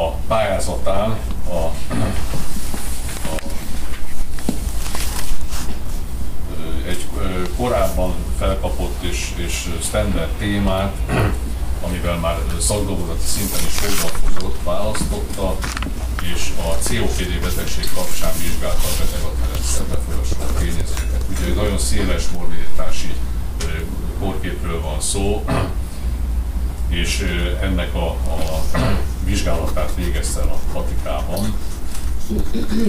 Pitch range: 70-90 Hz